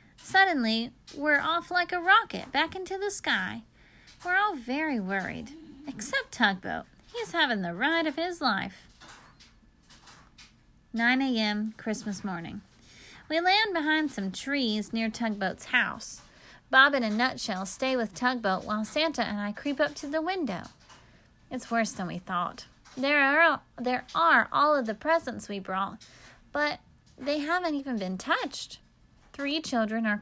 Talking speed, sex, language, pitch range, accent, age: 150 wpm, female, English, 215-325 Hz, American, 30-49